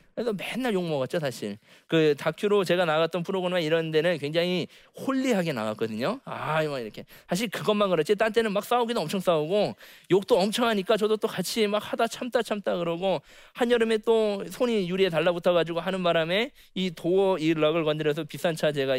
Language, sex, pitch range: Korean, male, 145-205 Hz